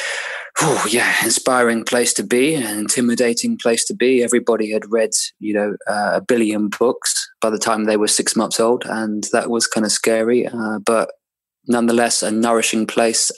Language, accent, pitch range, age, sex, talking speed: English, British, 110-120 Hz, 20-39, male, 180 wpm